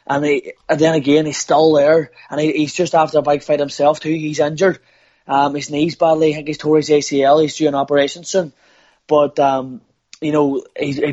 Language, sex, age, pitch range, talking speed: English, male, 20-39, 140-160 Hz, 210 wpm